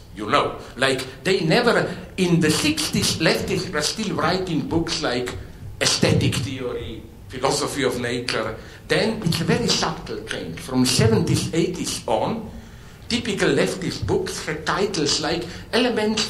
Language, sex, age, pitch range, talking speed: English, male, 60-79, 130-190 Hz, 135 wpm